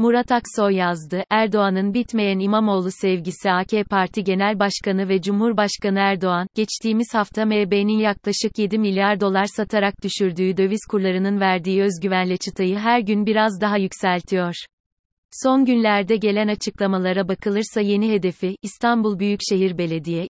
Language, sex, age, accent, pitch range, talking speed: Turkish, female, 30-49, native, 185-215 Hz, 125 wpm